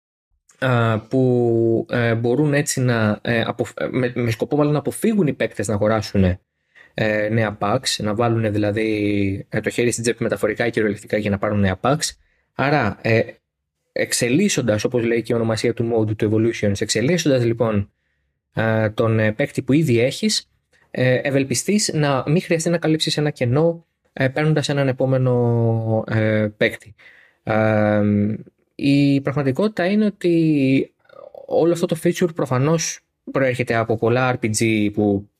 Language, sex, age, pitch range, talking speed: Greek, male, 20-39, 110-145 Hz, 150 wpm